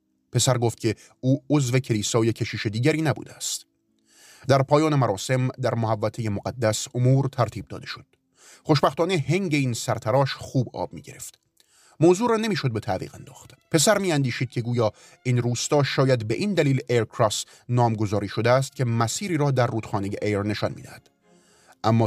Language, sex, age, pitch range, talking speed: Persian, male, 30-49, 110-140 Hz, 160 wpm